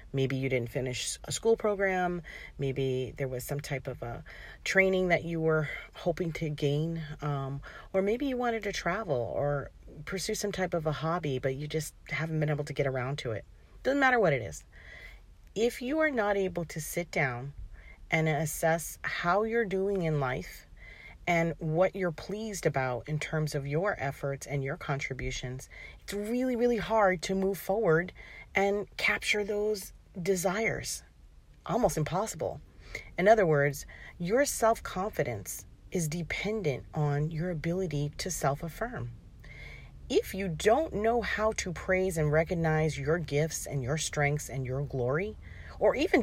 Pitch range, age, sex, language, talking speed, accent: 140-195 Hz, 40-59, female, English, 160 wpm, American